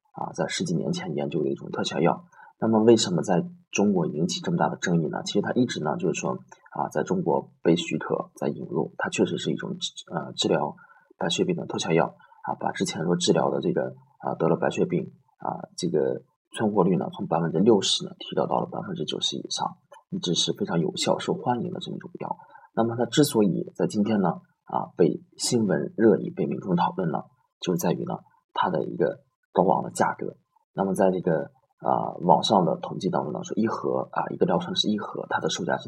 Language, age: Chinese, 20-39